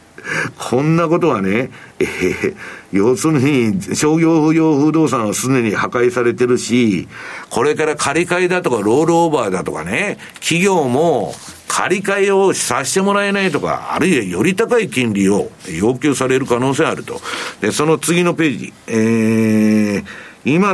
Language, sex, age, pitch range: Japanese, male, 60-79, 125-195 Hz